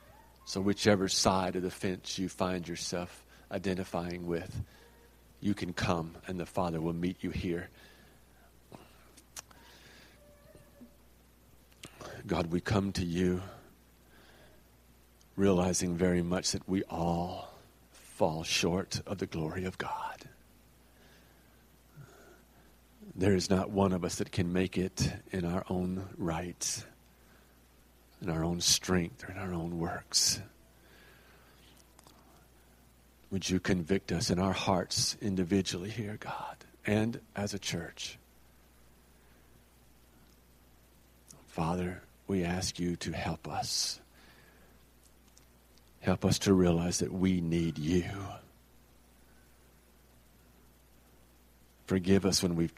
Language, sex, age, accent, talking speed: English, male, 50-69, American, 110 wpm